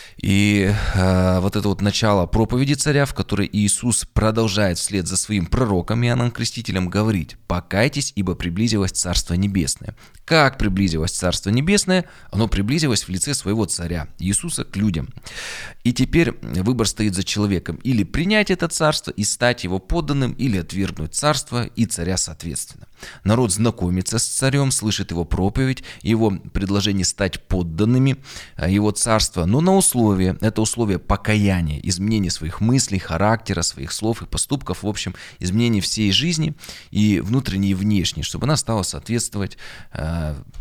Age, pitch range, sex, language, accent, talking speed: 20-39, 95-120 Hz, male, Russian, native, 145 wpm